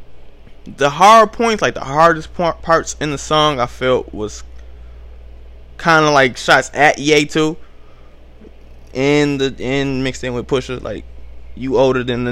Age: 20-39